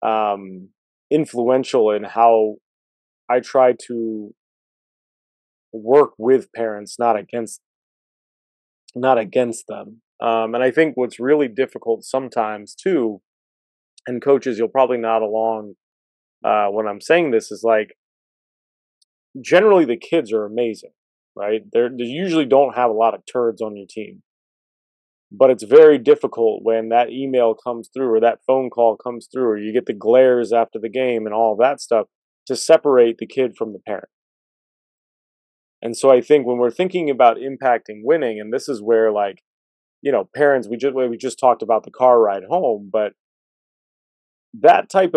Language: English